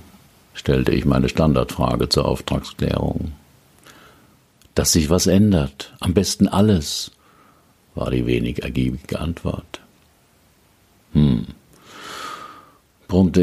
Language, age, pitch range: German, 60-79, 75-100 Hz